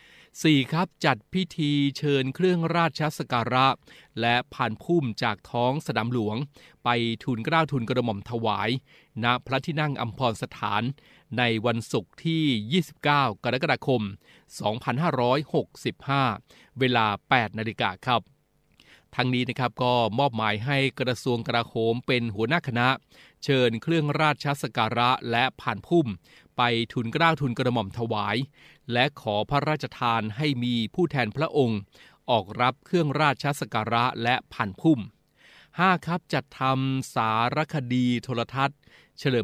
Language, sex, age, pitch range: Thai, male, 20-39, 115-145 Hz